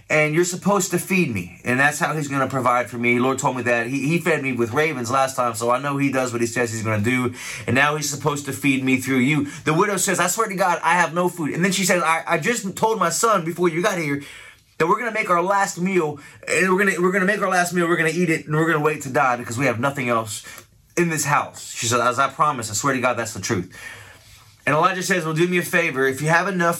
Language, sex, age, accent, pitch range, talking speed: English, male, 20-39, American, 125-165 Hz, 305 wpm